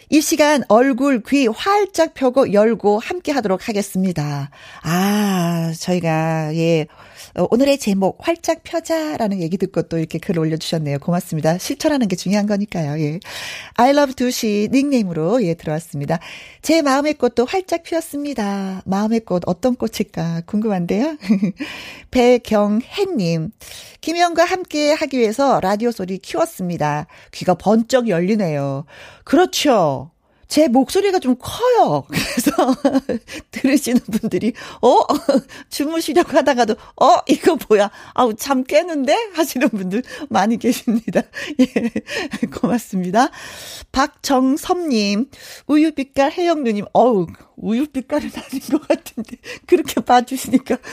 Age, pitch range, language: 40-59, 200-295 Hz, Korean